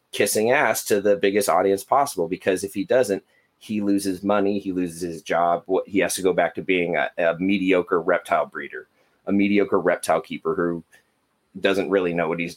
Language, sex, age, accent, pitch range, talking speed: English, male, 30-49, American, 95-105 Hz, 195 wpm